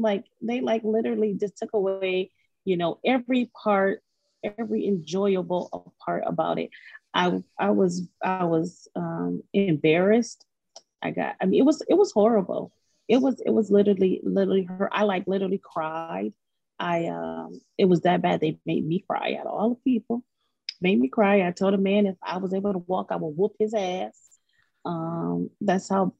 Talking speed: 180 wpm